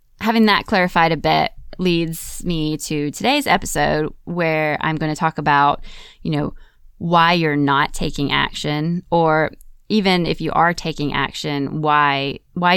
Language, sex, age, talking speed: English, female, 20-39, 150 wpm